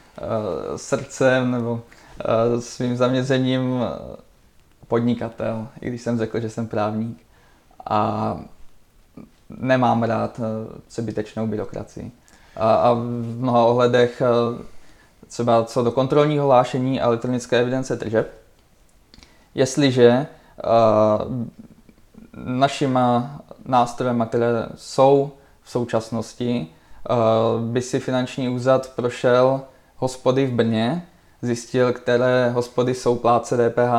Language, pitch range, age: Czech, 115-125 Hz, 20-39